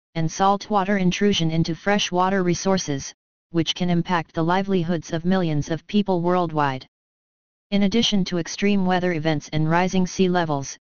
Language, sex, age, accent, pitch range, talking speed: Portuguese, female, 30-49, American, 165-190 Hz, 145 wpm